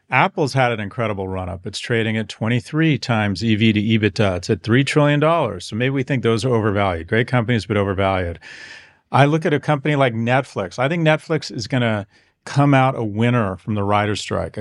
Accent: American